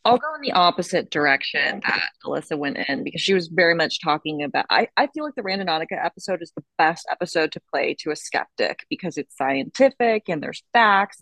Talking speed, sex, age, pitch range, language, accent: 210 wpm, female, 20-39, 155-190 Hz, English, American